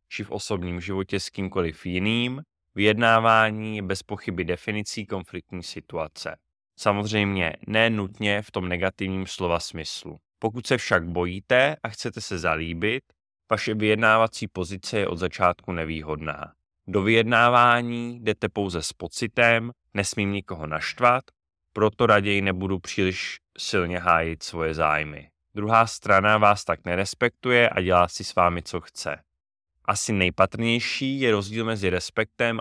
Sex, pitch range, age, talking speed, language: male, 90-110 Hz, 20-39, 135 wpm, Czech